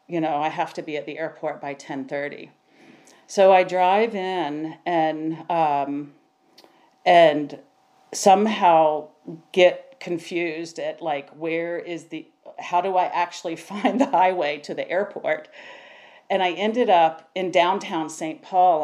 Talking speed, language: 140 wpm, English